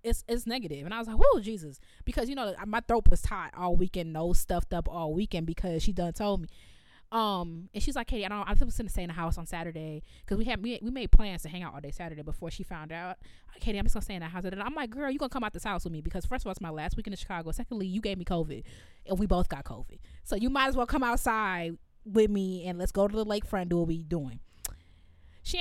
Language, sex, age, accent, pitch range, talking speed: English, female, 20-39, American, 165-220 Hz, 290 wpm